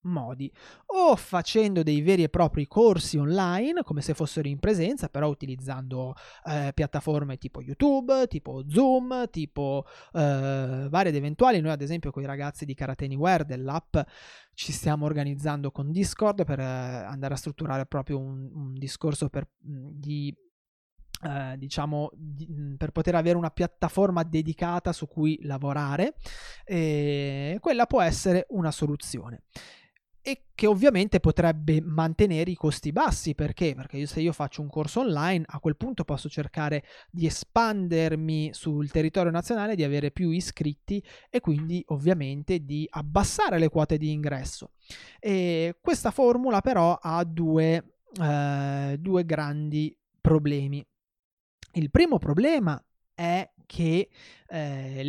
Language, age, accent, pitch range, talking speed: Italian, 20-39, native, 145-175 Hz, 135 wpm